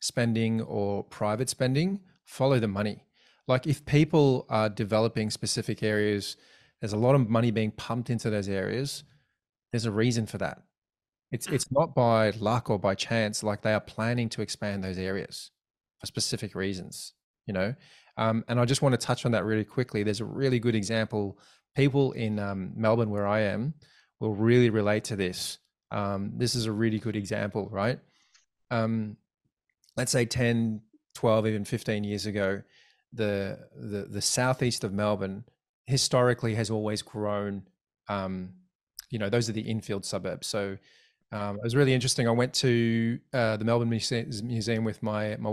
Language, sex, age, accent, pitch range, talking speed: English, male, 20-39, Australian, 105-120 Hz, 170 wpm